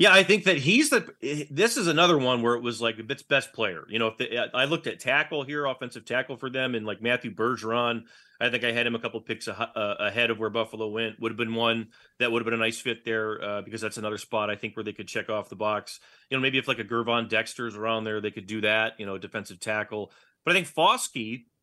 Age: 30-49